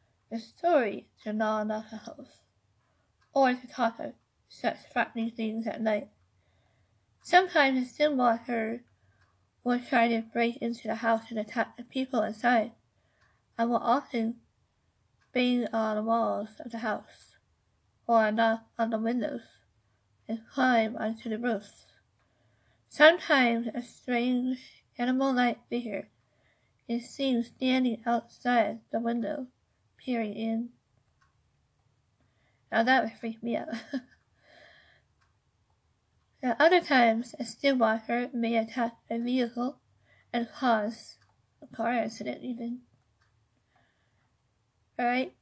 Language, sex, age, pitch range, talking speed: English, female, 50-69, 215-250 Hz, 110 wpm